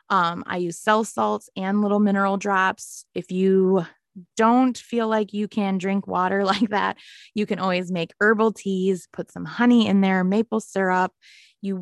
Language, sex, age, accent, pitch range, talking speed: English, female, 20-39, American, 185-220 Hz, 170 wpm